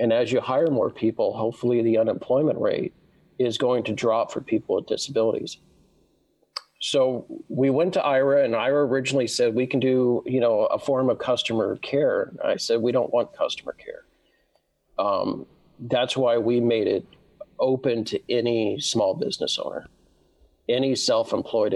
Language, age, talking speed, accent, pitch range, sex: English, 40-59, 160 wpm, American, 110-135 Hz, male